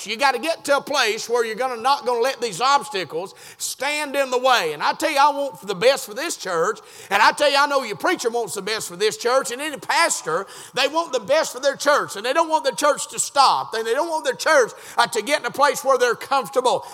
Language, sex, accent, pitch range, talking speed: English, male, American, 245-310 Hz, 275 wpm